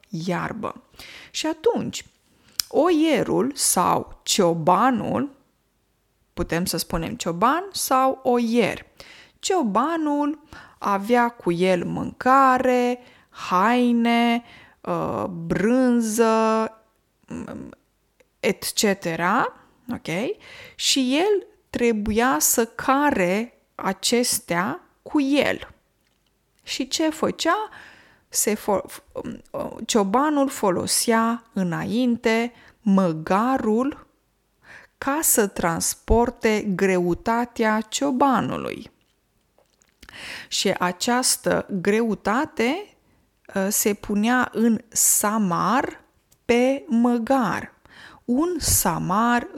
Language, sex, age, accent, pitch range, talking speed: Romanian, female, 20-39, native, 200-265 Hz, 65 wpm